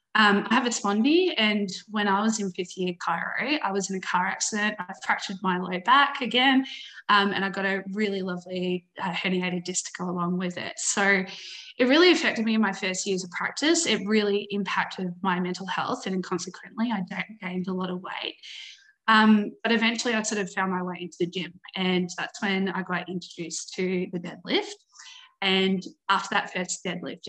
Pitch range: 185-220 Hz